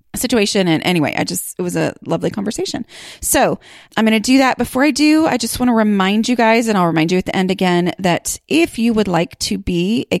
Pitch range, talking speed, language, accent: 160-230 Hz, 245 wpm, English, American